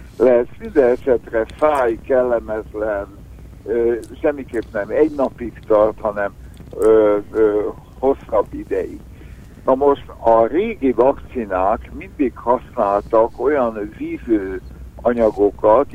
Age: 60-79